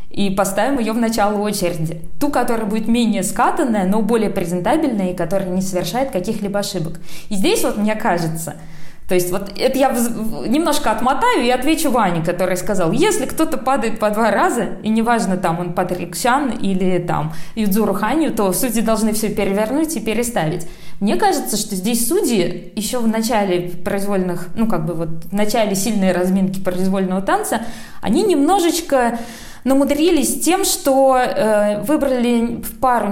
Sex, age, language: female, 20-39, Russian